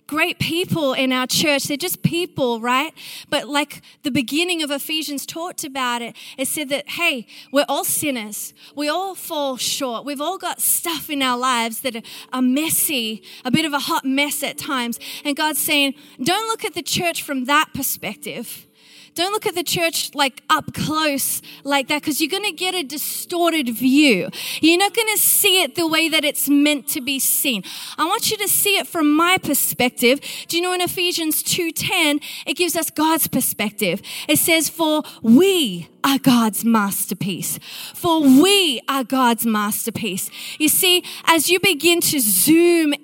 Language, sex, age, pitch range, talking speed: English, female, 30-49, 275-345 Hz, 175 wpm